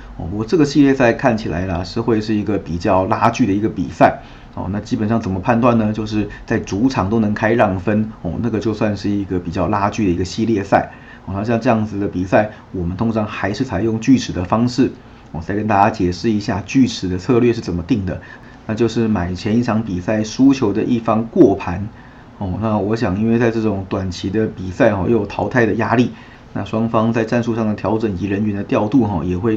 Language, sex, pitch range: Chinese, male, 95-120 Hz